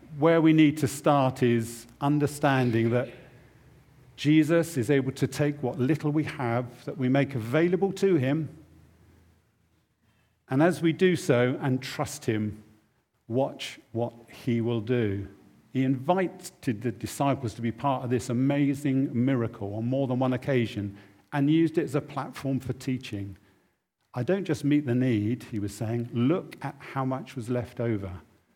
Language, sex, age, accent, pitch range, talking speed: English, male, 50-69, British, 115-145 Hz, 160 wpm